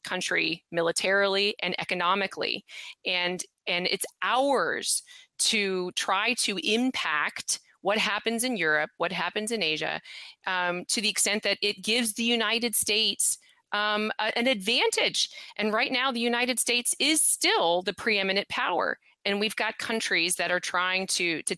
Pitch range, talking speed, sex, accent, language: 180-230 Hz, 145 wpm, female, American, English